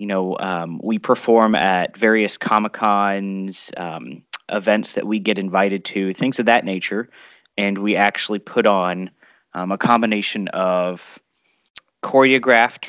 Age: 20-39